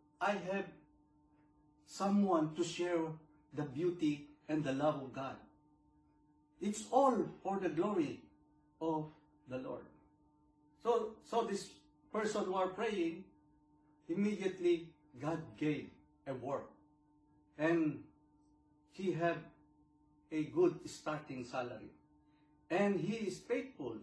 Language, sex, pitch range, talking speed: Filipino, male, 150-200 Hz, 105 wpm